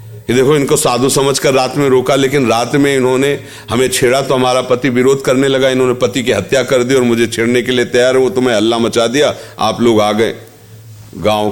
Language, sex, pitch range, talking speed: Hindi, male, 100-125 Hz, 220 wpm